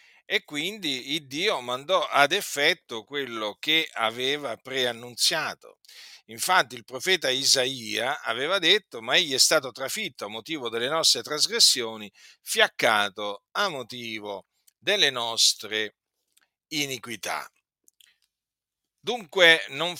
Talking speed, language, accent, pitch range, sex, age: 105 wpm, Italian, native, 115-165 Hz, male, 50-69